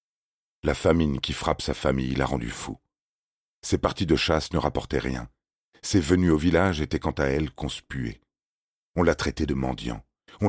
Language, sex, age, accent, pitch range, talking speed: French, male, 40-59, French, 70-85 Hz, 175 wpm